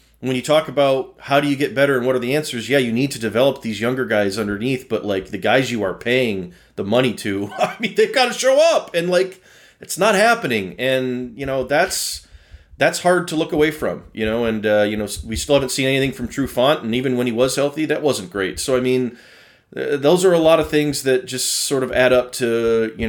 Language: English